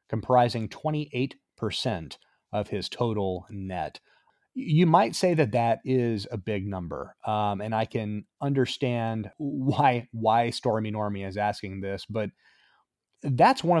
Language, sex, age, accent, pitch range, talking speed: English, male, 30-49, American, 105-130 Hz, 130 wpm